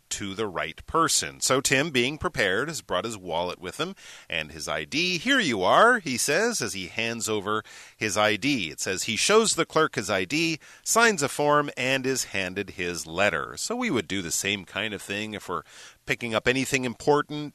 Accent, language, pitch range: American, Chinese, 105-165 Hz